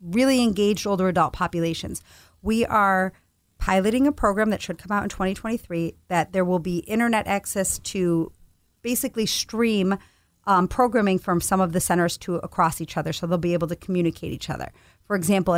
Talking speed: 175 wpm